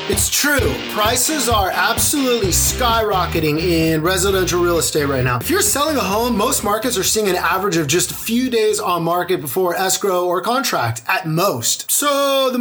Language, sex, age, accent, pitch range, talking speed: English, male, 30-49, American, 185-260 Hz, 180 wpm